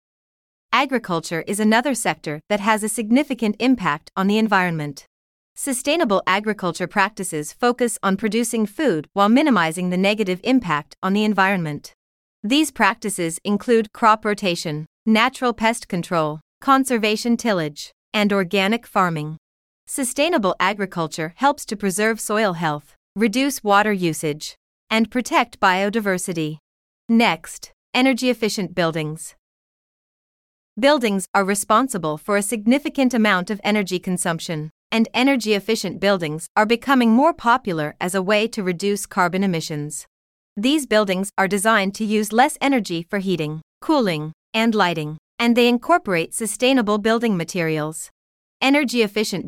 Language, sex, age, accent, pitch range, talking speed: English, female, 30-49, American, 180-235 Hz, 120 wpm